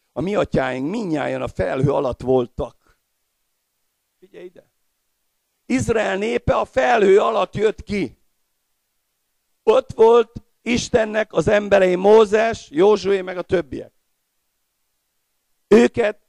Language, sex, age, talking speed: Hungarian, male, 50-69, 105 wpm